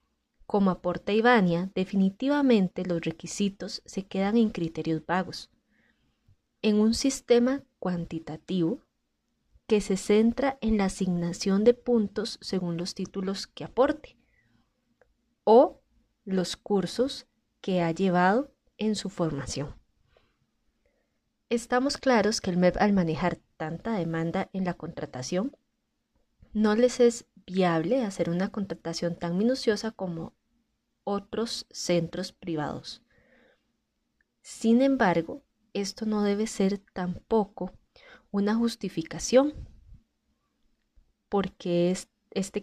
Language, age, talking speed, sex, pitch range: Spanish, 20-39, 105 wpm, female, 175-230 Hz